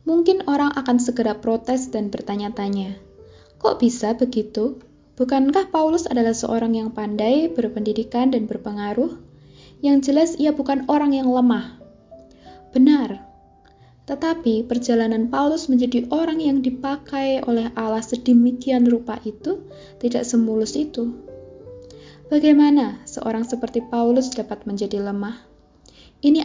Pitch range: 215-265 Hz